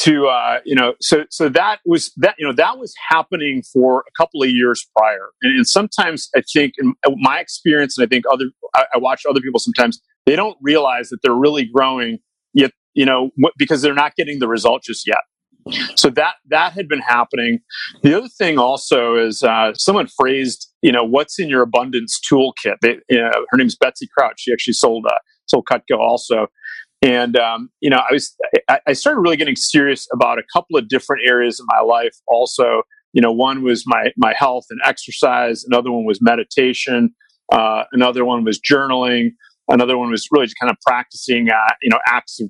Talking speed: 205 wpm